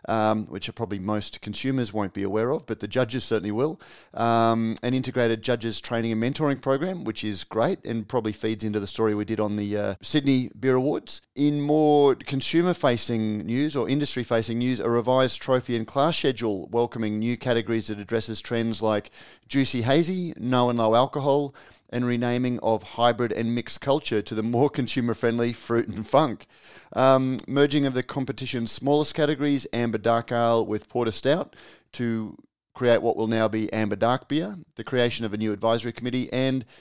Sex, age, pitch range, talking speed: male, 30-49, 110-135 Hz, 185 wpm